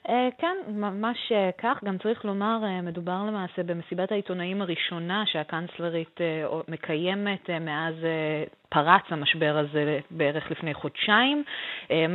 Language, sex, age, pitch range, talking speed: Hebrew, female, 20-39, 170-215 Hz, 100 wpm